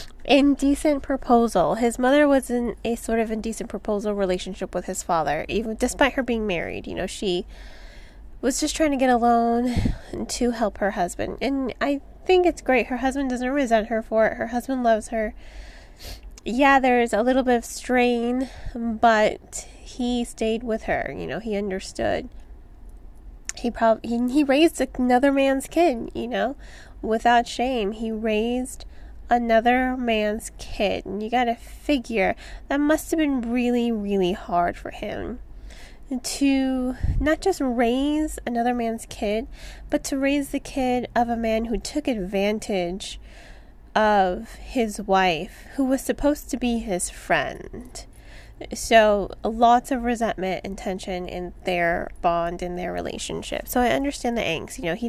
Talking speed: 155 wpm